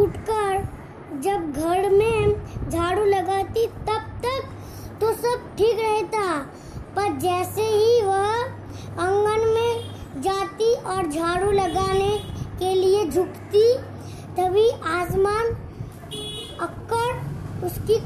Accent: native